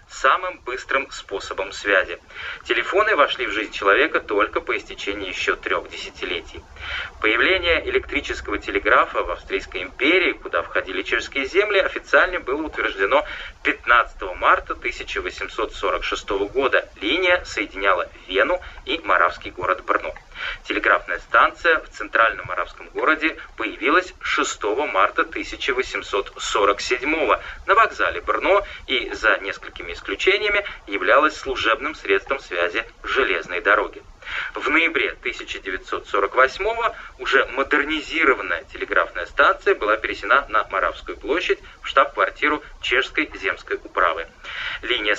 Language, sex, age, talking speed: Russian, male, 20-39, 110 wpm